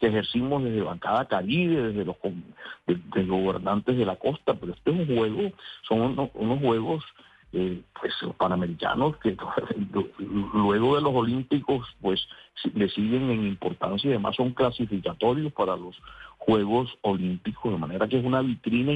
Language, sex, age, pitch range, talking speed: Spanish, male, 50-69, 105-135 Hz, 160 wpm